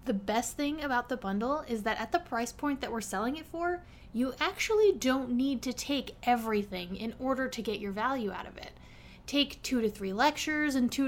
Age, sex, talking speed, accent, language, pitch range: 20-39, female, 215 wpm, American, English, 220-285 Hz